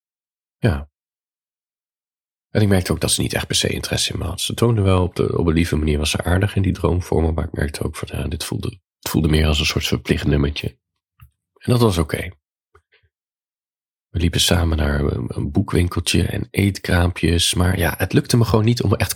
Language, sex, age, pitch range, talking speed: Dutch, male, 40-59, 80-105 Hz, 215 wpm